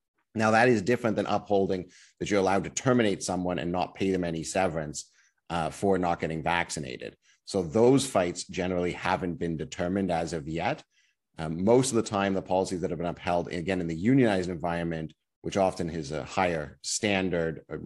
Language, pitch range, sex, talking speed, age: English, 85-100 Hz, male, 190 wpm, 30-49